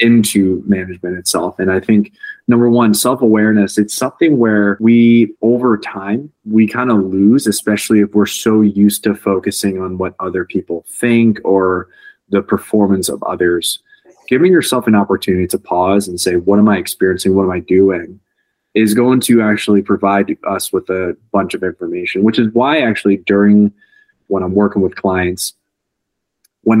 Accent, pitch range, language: American, 95-110 Hz, English